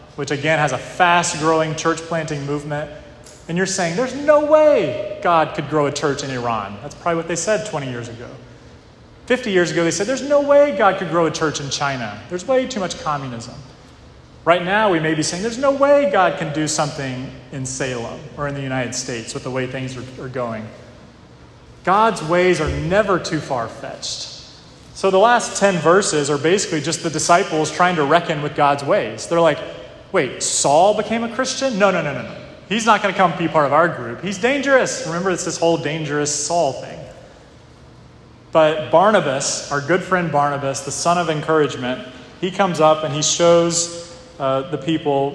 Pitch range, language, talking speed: 140-175 Hz, English, 200 wpm